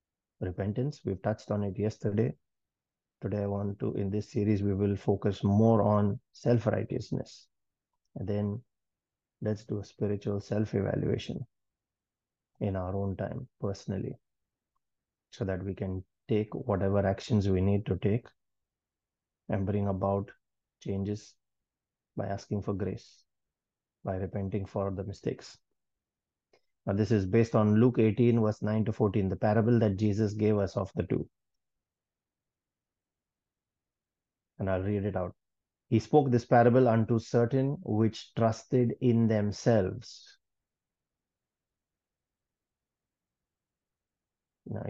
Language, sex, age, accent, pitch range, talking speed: English, male, 30-49, Indian, 100-115 Hz, 120 wpm